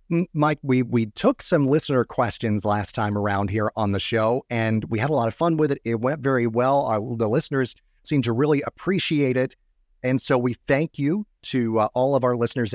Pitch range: 110-135 Hz